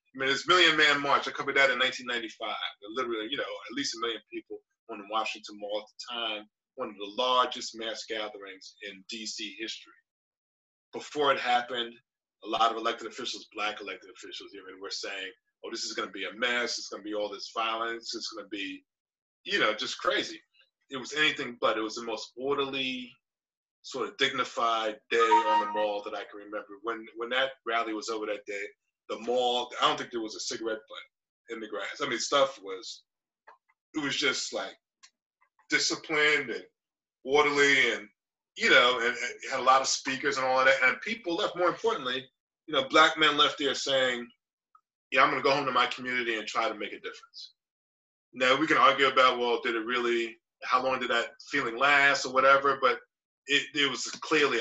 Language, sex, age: English, male, 20-39